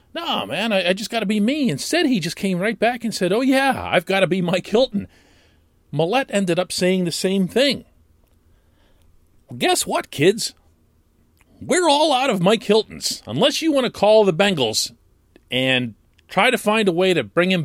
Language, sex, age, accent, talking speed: English, male, 40-59, American, 195 wpm